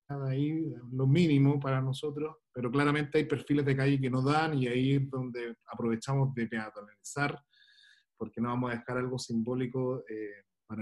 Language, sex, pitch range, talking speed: Spanish, male, 120-145 Hz, 165 wpm